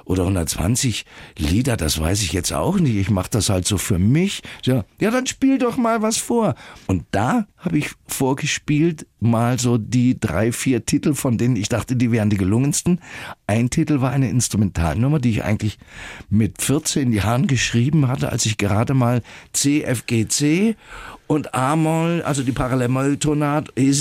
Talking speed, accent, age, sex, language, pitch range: 165 wpm, German, 50-69, male, German, 105-150 Hz